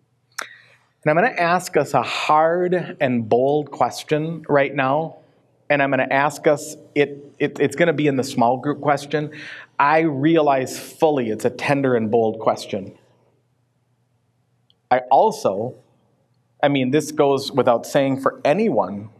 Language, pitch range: English, 125-145 Hz